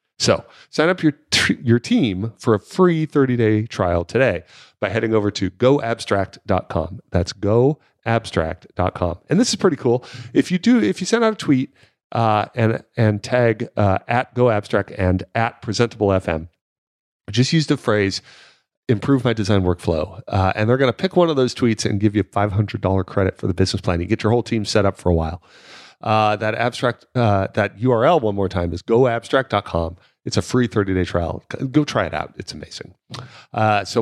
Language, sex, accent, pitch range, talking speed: English, male, American, 95-130 Hz, 190 wpm